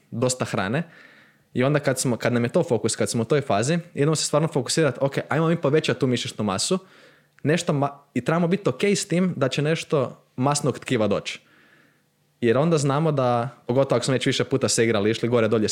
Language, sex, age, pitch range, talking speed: Croatian, male, 20-39, 115-150 Hz, 210 wpm